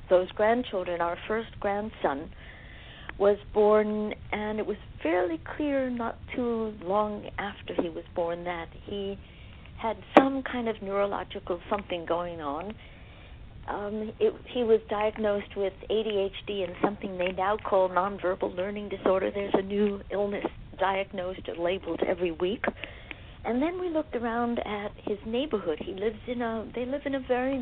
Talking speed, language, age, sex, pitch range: 150 wpm, English, 60-79, female, 190-225 Hz